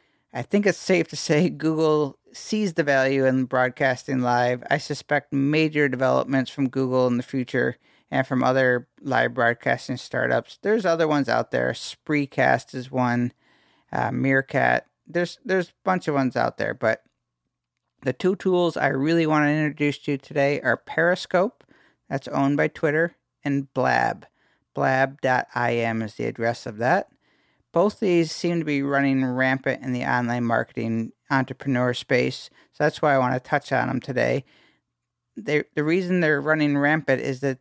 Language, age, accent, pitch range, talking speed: English, 50-69, American, 130-155 Hz, 165 wpm